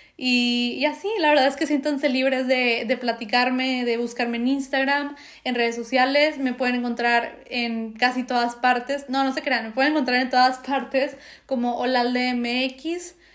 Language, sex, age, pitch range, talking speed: Spanish, female, 20-39, 245-280 Hz, 175 wpm